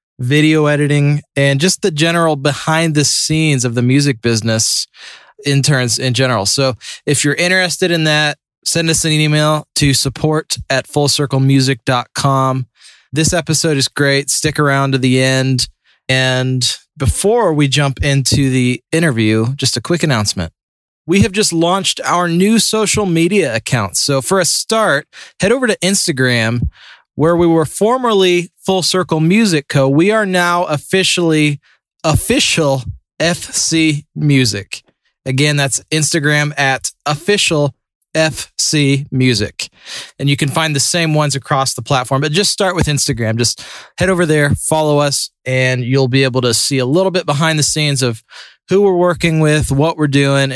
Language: English